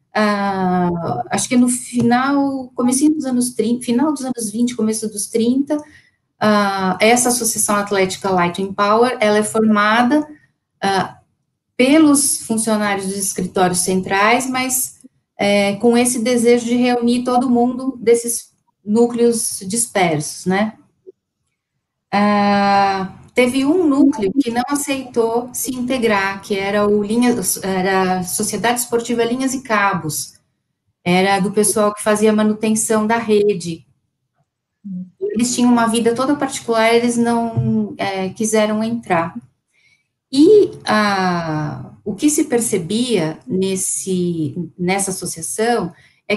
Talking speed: 120 wpm